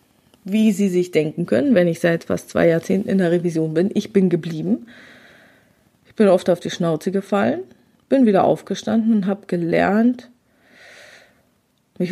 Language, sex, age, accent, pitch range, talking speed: German, female, 20-39, German, 185-225 Hz, 160 wpm